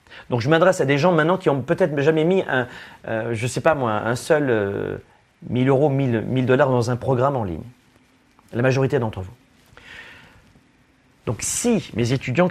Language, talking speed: French, 185 wpm